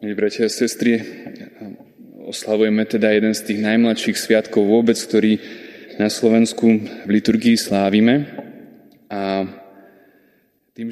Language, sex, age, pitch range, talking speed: Slovak, male, 20-39, 100-115 Hz, 105 wpm